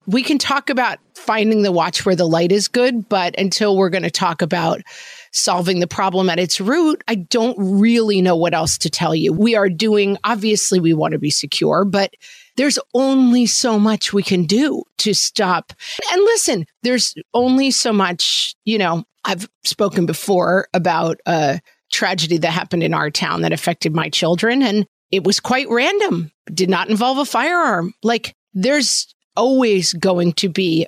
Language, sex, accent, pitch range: English, female, American, 180-230 Hz